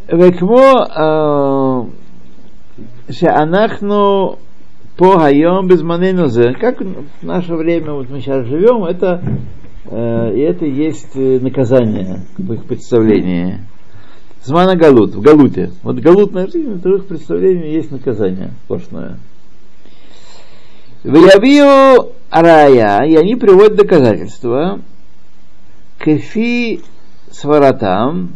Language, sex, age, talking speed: Russian, male, 60-79, 70 wpm